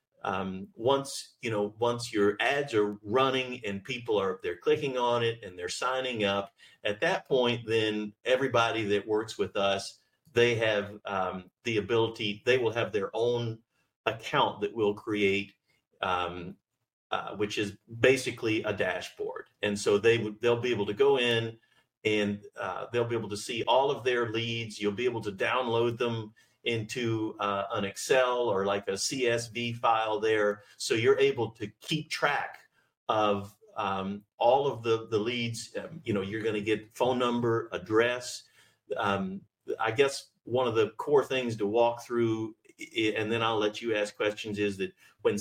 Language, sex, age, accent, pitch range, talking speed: English, male, 40-59, American, 105-125 Hz, 170 wpm